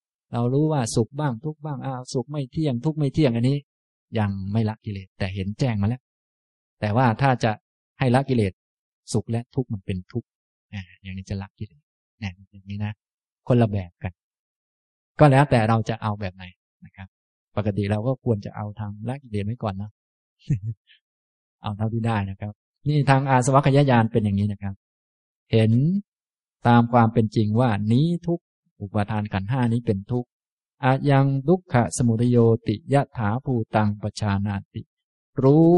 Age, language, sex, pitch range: 20-39, Thai, male, 105-130 Hz